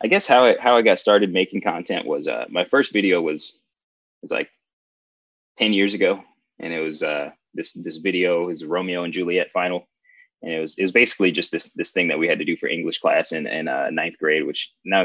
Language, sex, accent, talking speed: English, male, American, 230 wpm